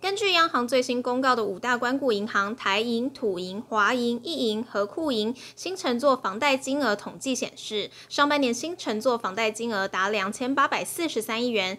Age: 20-39